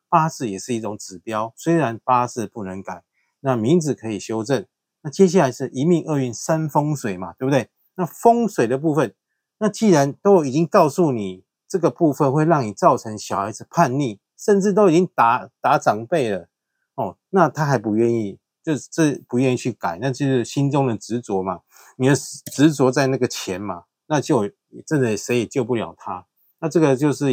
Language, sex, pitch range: Chinese, male, 110-150 Hz